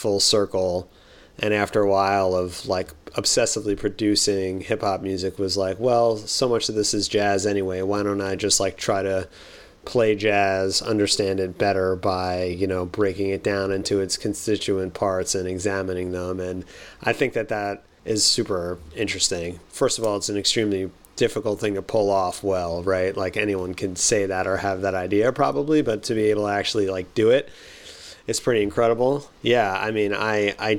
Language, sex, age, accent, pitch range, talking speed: English, male, 30-49, American, 95-105 Hz, 185 wpm